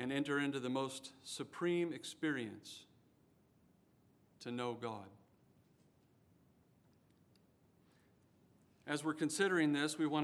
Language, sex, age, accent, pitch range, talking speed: English, male, 50-69, American, 125-150 Hz, 95 wpm